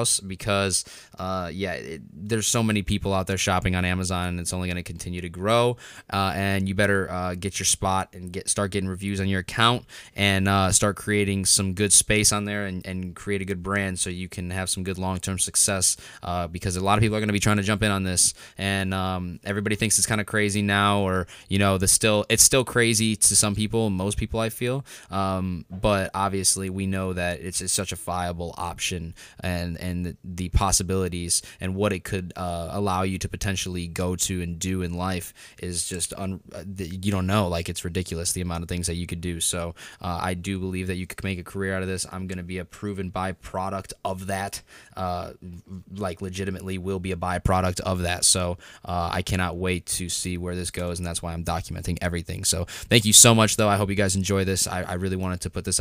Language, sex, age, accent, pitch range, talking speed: English, male, 20-39, American, 90-100 Hz, 235 wpm